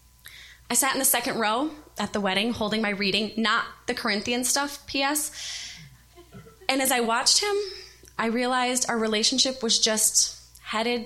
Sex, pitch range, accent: female, 195-255 Hz, American